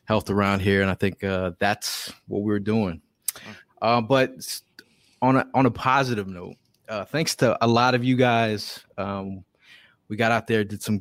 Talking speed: 185 wpm